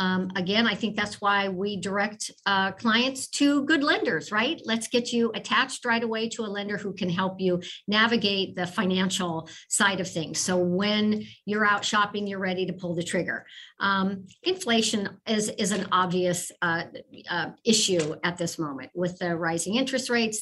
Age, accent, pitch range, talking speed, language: 50-69, American, 185-230 Hz, 180 wpm, English